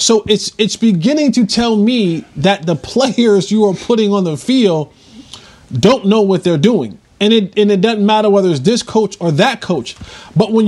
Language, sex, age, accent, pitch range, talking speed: English, male, 30-49, American, 170-240 Hz, 200 wpm